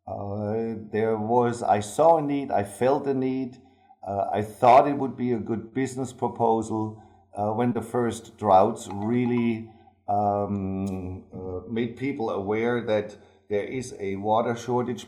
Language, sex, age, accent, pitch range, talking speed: English, male, 50-69, German, 105-120 Hz, 150 wpm